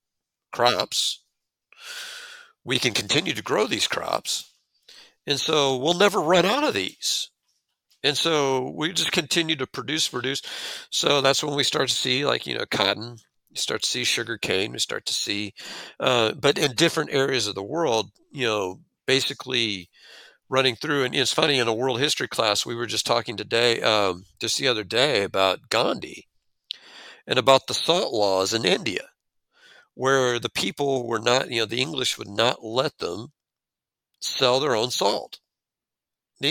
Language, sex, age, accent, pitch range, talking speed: English, male, 50-69, American, 120-150 Hz, 170 wpm